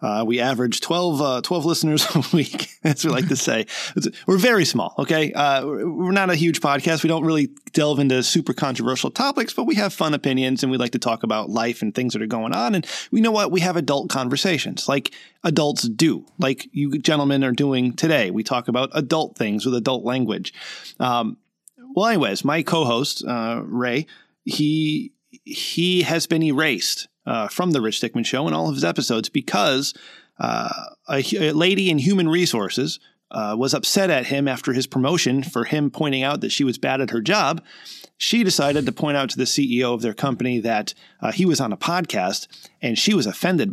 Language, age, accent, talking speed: English, 30-49, American, 205 wpm